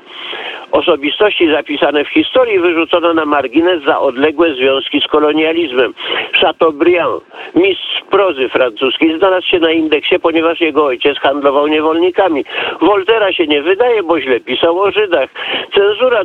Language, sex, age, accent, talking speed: Polish, male, 50-69, native, 130 wpm